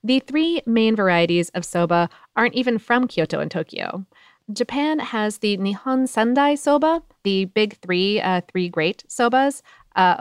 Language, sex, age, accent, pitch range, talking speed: English, female, 30-49, American, 180-260 Hz, 155 wpm